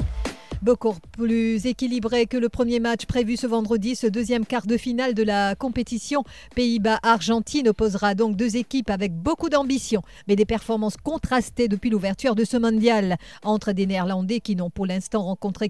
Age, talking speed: 40-59, 165 wpm